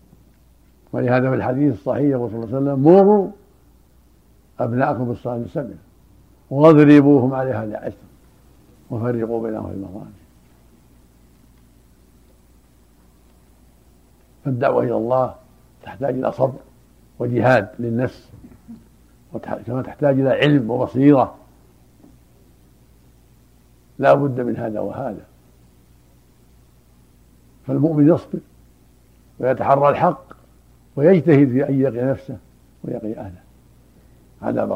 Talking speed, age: 85 wpm, 60-79